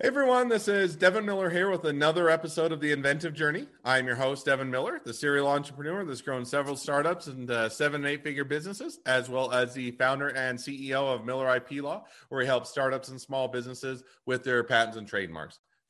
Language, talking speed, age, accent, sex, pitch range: English, 210 wpm, 30-49, American, male, 120-145 Hz